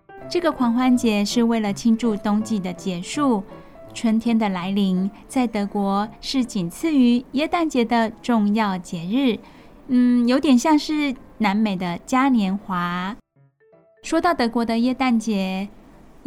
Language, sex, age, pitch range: Chinese, female, 10-29, 205-260 Hz